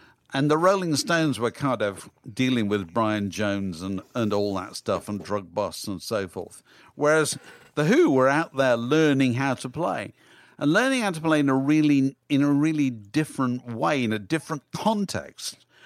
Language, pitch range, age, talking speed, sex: English, 100-155 Hz, 50-69, 185 wpm, male